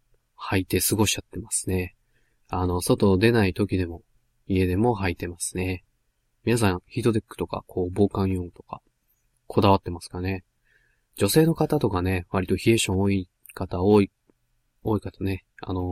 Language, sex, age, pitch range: Japanese, male, 20-39, 95-115 Hz